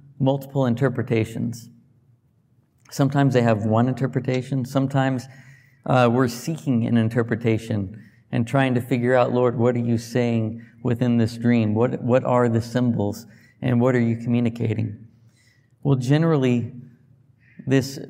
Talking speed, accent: 130 wpm, American